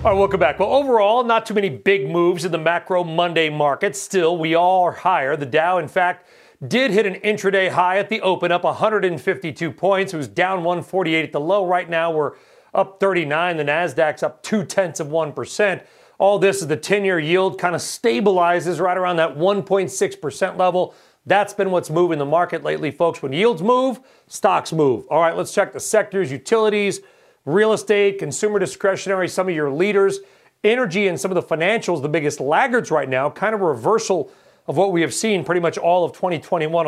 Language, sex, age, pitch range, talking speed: English, male, 40-59, 165-200 Hz, 200 wpm